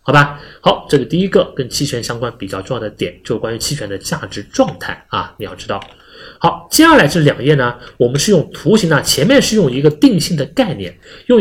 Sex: male